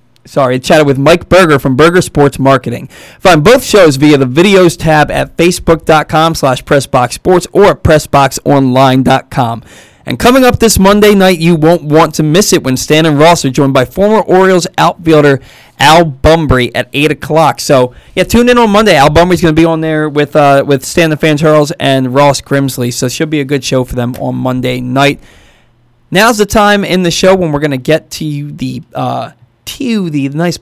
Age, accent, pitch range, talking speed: 20-39, American, 130-165 Hz, 205 wpm